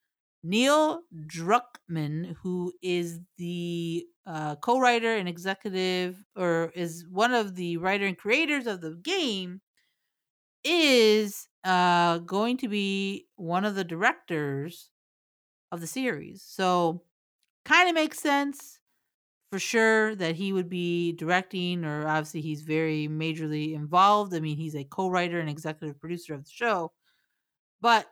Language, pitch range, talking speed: English, 165-220 Hz, 130 wpm